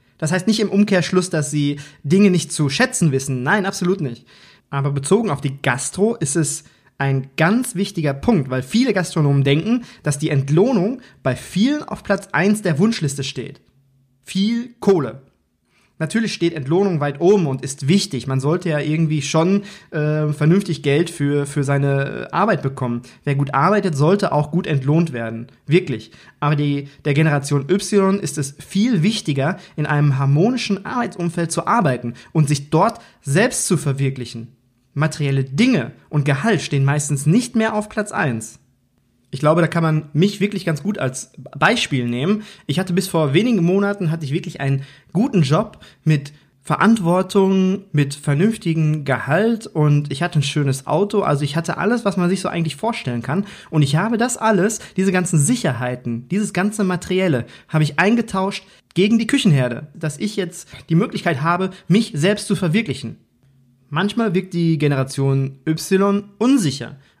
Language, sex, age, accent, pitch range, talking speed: German, male, 20-39, German, 140-195 Hz, 165 wpm